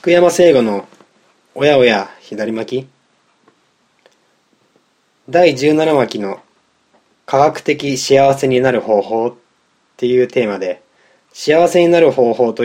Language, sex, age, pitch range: Japanese, male, 20-39, 120-155 Hz